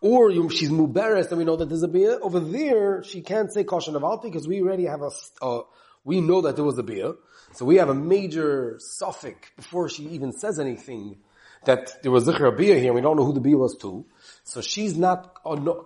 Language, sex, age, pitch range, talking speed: English, male, 30-49, 140-185 Hz, 230 wpm